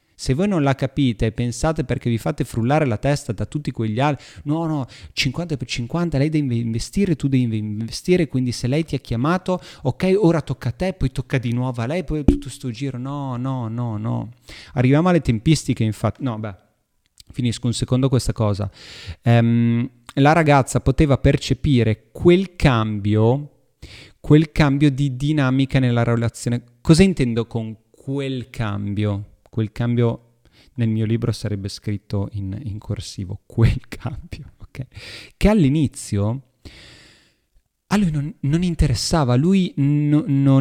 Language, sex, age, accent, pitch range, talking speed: Italian, male, 30-49, native, 115-145 Hz, 150 wpm